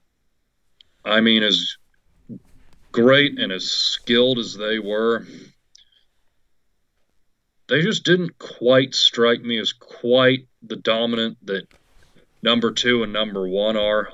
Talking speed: 115 wpm